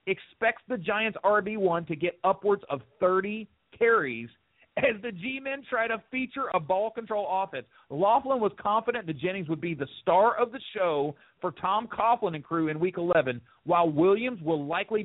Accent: American